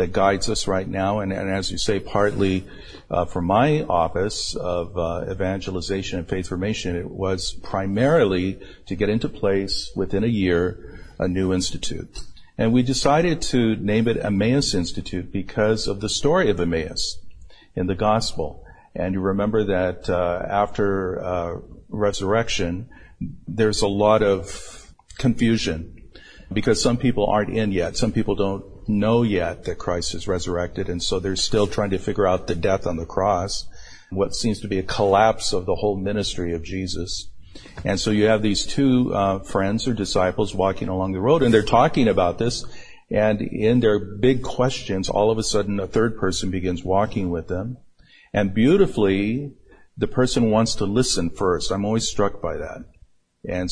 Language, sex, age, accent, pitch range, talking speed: English, male, 50-69, American, 95-110 Hz, 170 wpm